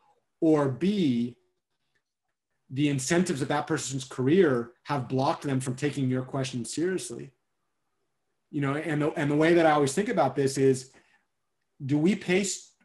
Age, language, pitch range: 40-59, English, 130-160 Hz